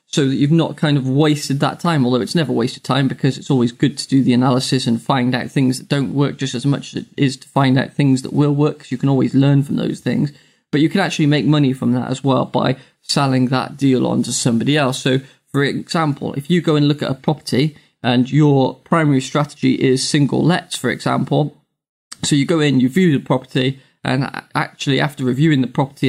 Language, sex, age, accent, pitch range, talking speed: English, male, 20-39, British, 130-150 Hz, 235 wpm